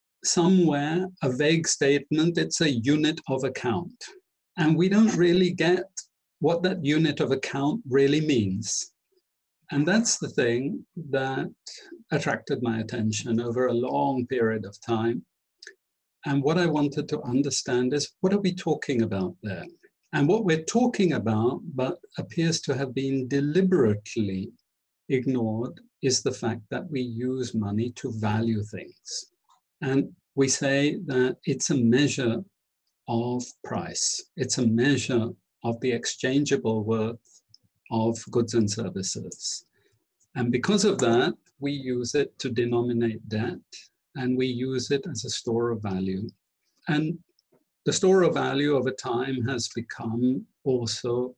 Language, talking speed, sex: English, 140 wpm, male